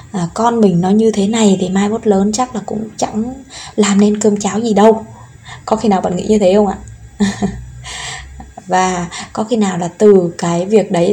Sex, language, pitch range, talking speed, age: female, Vietnamese, 190-225 Hz, 210 wpm, 20-39